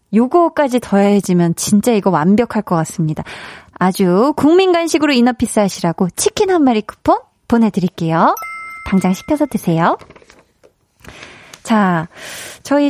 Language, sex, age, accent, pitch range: Korean, female, 20-39, native, 180-245 Hz